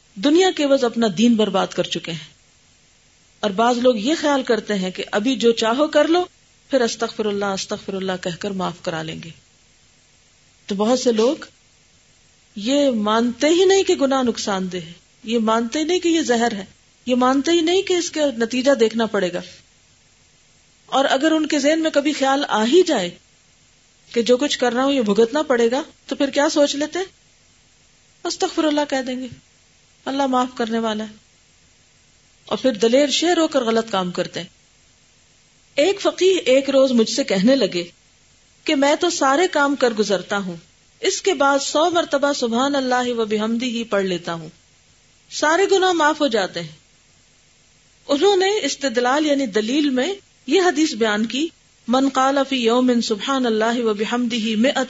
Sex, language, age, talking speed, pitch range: female, Urdu, 40-59, 180 wpm, 215-290 Hz